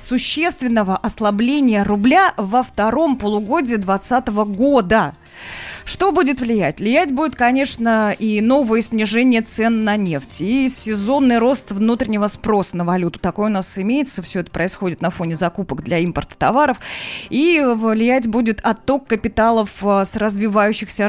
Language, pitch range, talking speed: Russian, 190-255 Hz, 135 wpm